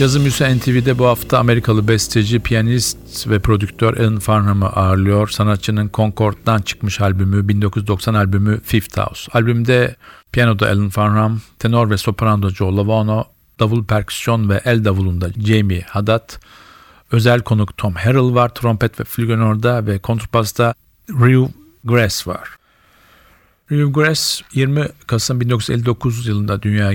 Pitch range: 105-120 Hz